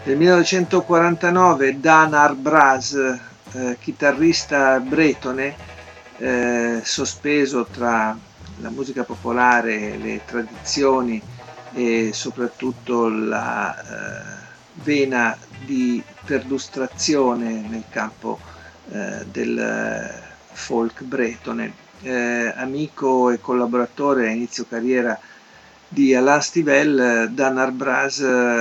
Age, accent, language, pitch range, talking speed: 50-69, native, Italian, 120-145 Hz, 85 wpm